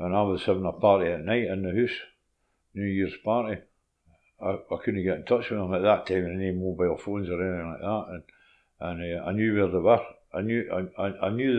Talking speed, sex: 205 wpm, male